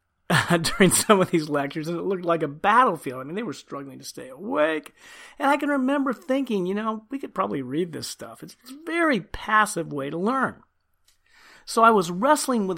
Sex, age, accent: male, 40-59, American